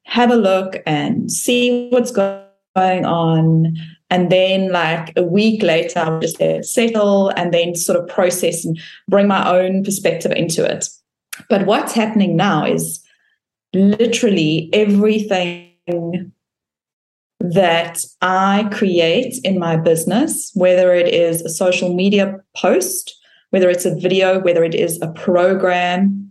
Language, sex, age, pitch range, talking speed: English, female, 20-39, 175-210 Hz, 130 wpm